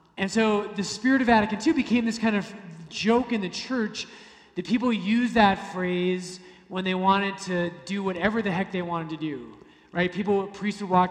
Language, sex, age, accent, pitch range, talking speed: English, male, 30-49, American, 170-225 Hz, 200 wpm